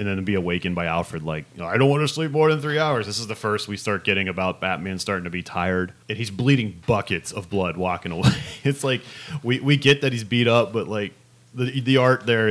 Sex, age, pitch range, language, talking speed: male, 30-49, 90-120 Hz, English, 255 wpm